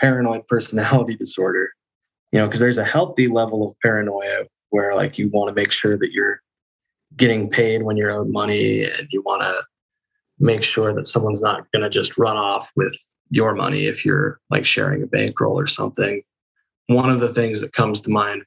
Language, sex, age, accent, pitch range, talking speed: English, male, 20-39, American, 105-120 Hz, 195 wpm